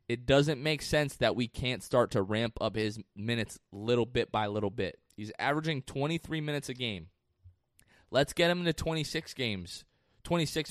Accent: American